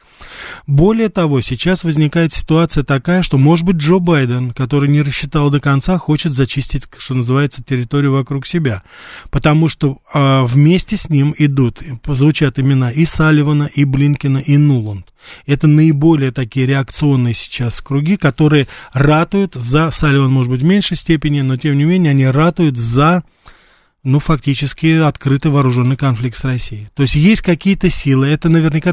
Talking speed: 155 wpm